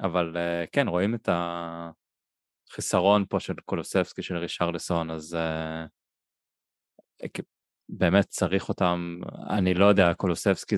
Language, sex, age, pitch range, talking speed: Hebrew, male, 20-39, 85-100 Hz, 105 wpm